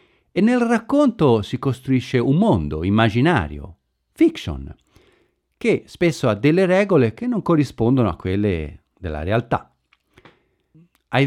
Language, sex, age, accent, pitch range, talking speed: Italian, male, 40-59, native, 105-165 Hz, 115 wpm